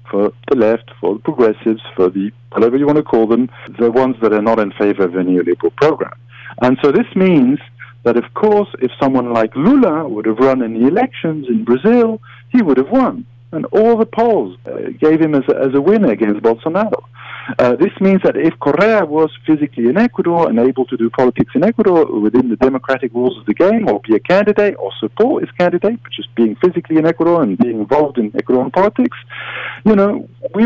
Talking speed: 210 wpm